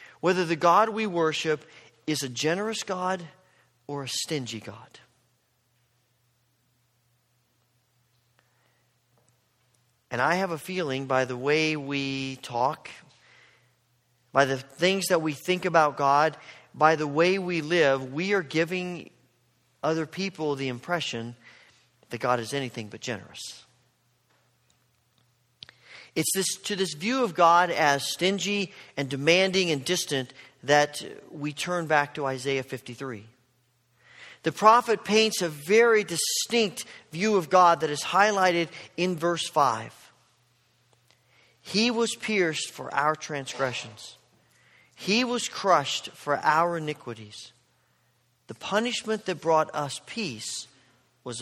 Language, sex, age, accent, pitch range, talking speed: English, male, 40-59, American, 125-175 Hz, 120 wpm